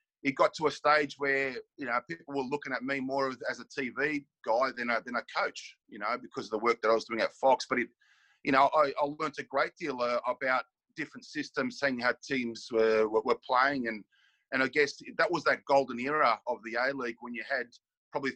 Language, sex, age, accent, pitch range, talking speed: English, male, 30-49, Australian, 115-145 Hz, 235 wpm